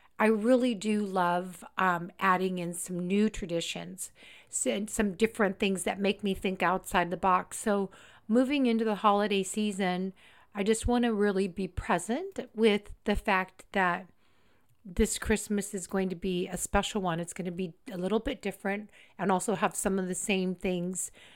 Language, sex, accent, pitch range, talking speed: English, female, American, 185-220 Hz, 175 wpm